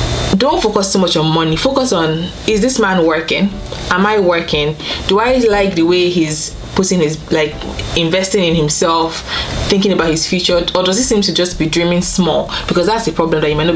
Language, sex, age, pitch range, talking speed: English, female, 20-39, 155-190 Hz, 210 wpm